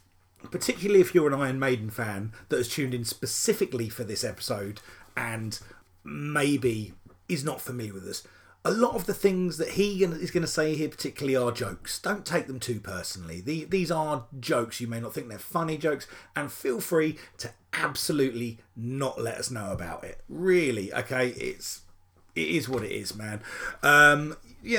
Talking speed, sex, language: 180 wpm, male, English